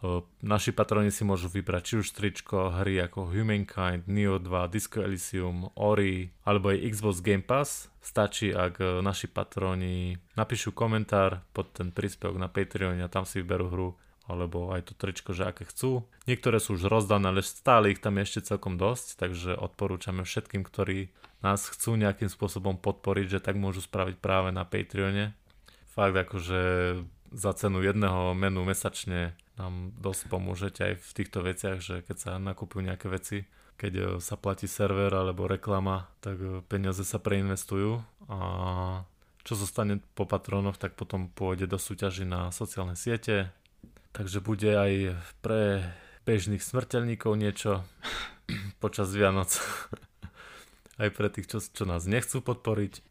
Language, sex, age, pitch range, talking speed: Slovak, male, 20-39, 95-105 Hz, 150 wpm